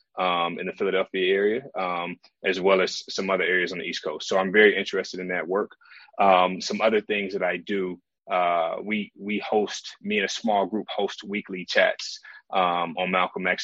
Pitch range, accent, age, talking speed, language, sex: 90-110 Hz, American, 30-49, 200 wpm, English, male